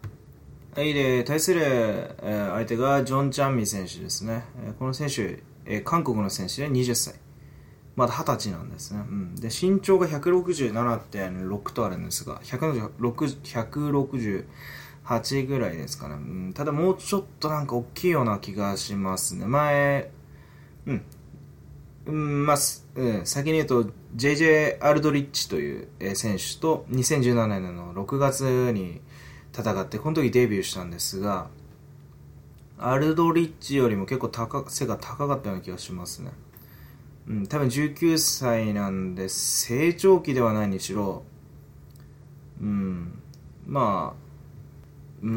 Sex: male